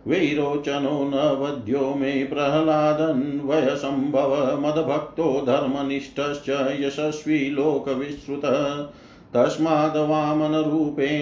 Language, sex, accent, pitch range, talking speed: Hindi, male, native, 135-150 Hz, 60 wpm